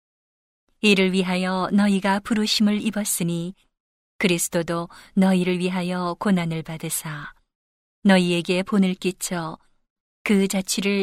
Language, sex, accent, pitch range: Korean, female, native, 175-205 Hz